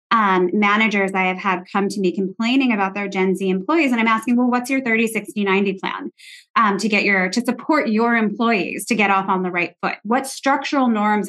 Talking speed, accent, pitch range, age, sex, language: 225 wpm, American, 195-245 Hz, 20-39, female, English